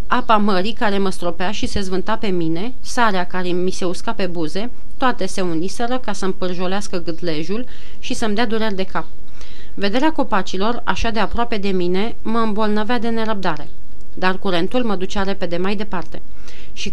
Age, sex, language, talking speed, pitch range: 30-49, female, Romanian, 175 wpm, 180-230 Hz